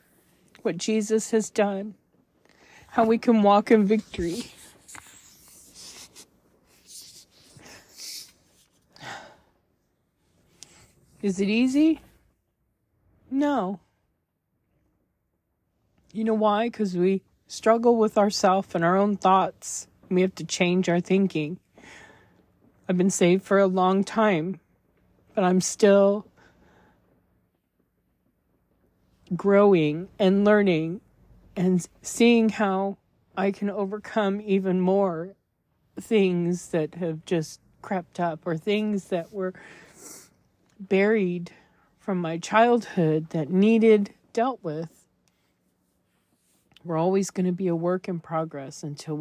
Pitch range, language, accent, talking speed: 165-210 Hz, English, American, 100 wpm